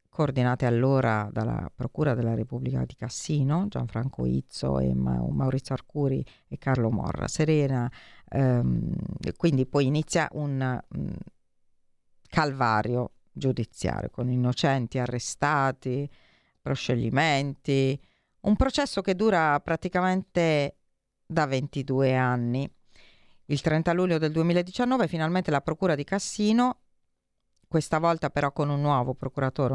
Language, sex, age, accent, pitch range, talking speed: Italian, female, 40-59, native, 125-160 Hz, 110 wpm